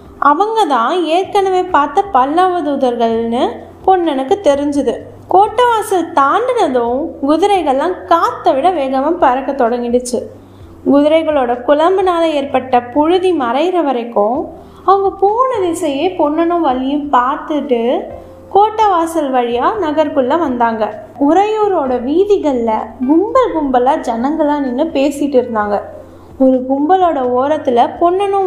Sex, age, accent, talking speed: female, 20-39, native, 90 wpm